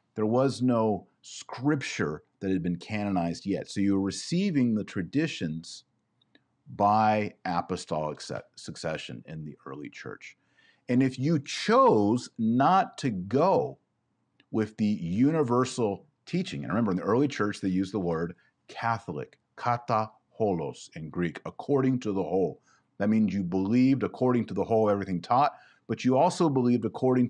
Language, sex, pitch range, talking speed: English, male, 100-130 Hz, 145 wpm